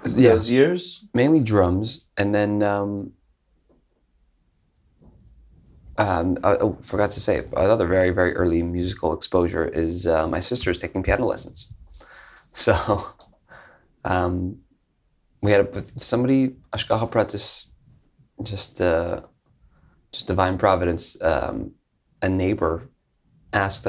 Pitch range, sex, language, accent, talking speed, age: 90-110 Hz, male, English, American, 110 wpm, 20-39